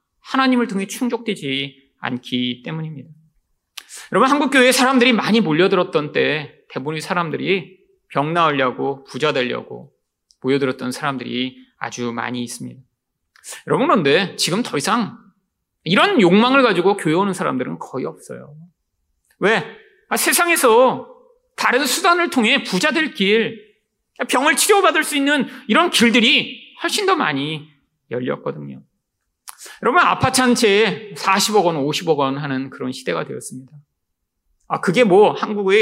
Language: Korean